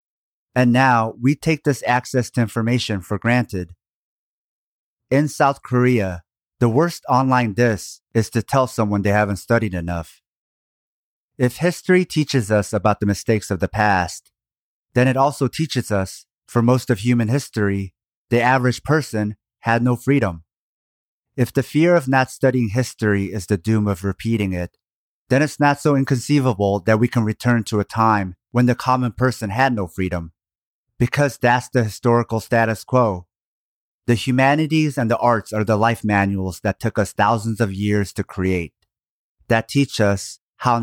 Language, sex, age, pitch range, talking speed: English, male, 30-49, 100-125 Hz, 160 wpm